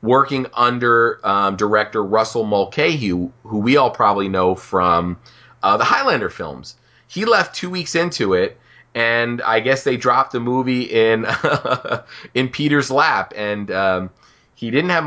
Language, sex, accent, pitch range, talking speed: English, male, American, 95-125 Hz, 155 wpm